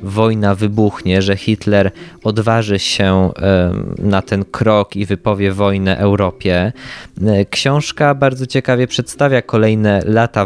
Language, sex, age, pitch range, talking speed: Polish, male, 20-39, 100-115 Hz, 110 wpm